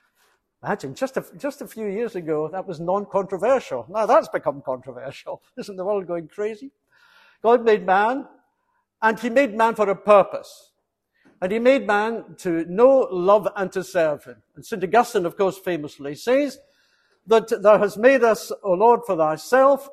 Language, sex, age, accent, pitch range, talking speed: English, male, 60-79, British, 180-260 Hz, 170 wpm